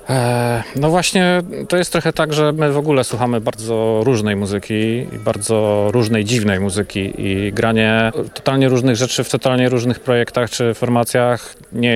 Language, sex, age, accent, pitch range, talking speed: Polish, male, 40-59, native, 105-125 Hz, 155 wpm